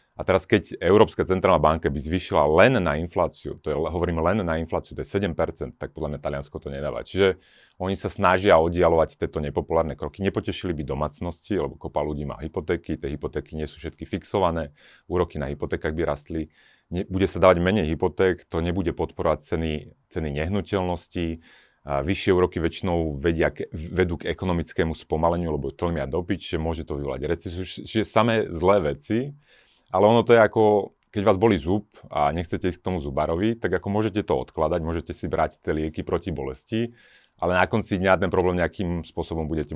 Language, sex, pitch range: Slovak, male, 80-95 Hz